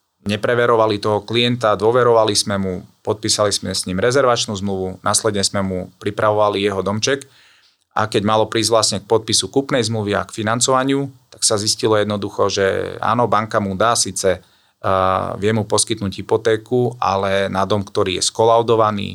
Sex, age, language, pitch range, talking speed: male, 30-49, Slovak, 95-110 Hz, 155 wpm